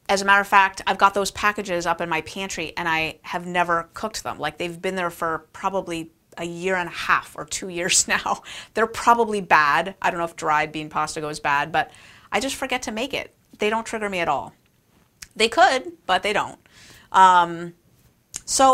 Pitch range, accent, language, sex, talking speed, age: 160-205 Hz, American, English, female, 210 wpm, 30-49